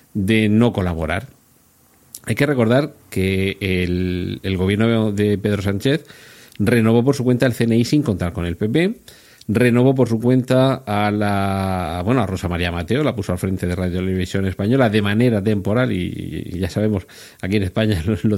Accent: Spanish